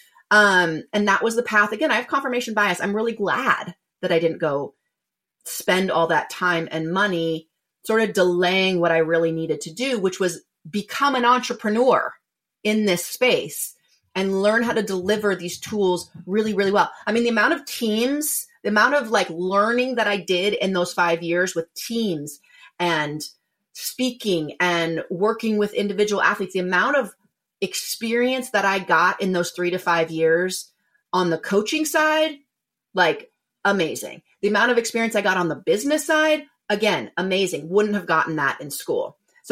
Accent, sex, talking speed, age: American, female, 175 wpm, 30-49